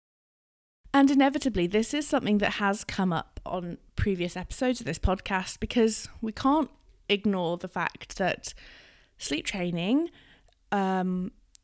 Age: 20-39